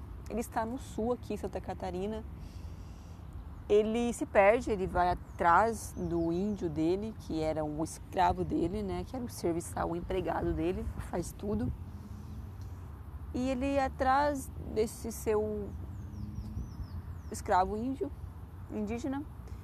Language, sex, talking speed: Portuguese, female, 125 wpm